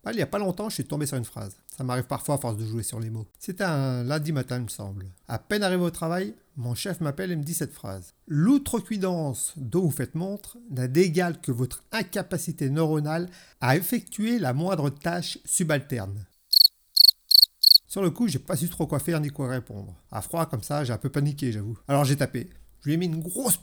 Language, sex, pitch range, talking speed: French, male, 115-165 Hz, 225 wpm